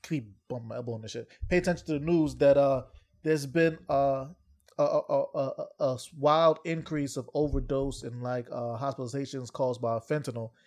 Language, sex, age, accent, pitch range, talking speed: English, male, 20-39, American, 125-145 Hz, 180 wpm